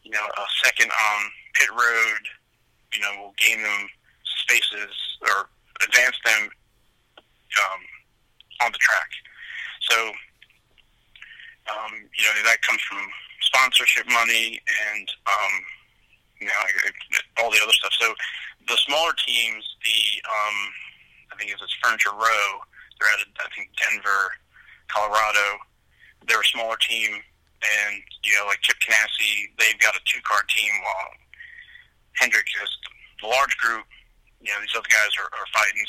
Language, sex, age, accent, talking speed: English, male, 30-49, American, 135 wpm